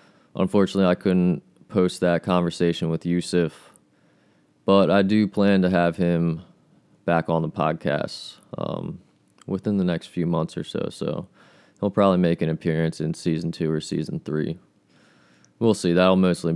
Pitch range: 80-90 Hz